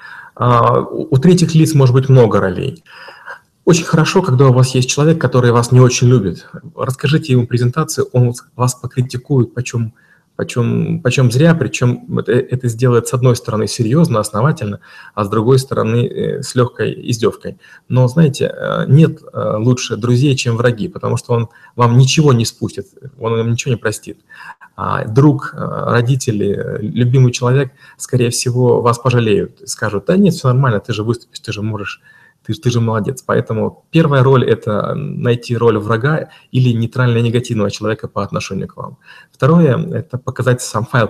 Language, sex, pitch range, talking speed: Russian, male, 115-135 Hz, 155 wpm